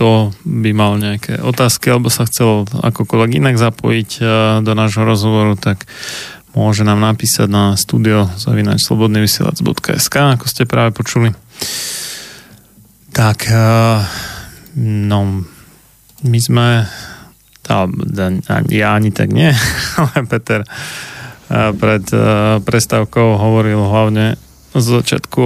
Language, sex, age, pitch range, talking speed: Slovak, male, 30-49, 110-125 Hz, 95 wpm